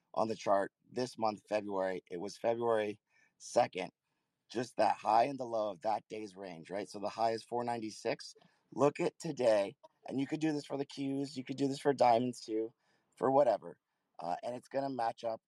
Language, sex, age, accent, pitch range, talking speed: English, male, 30-49, American, 105-130 Hz, 200 wpm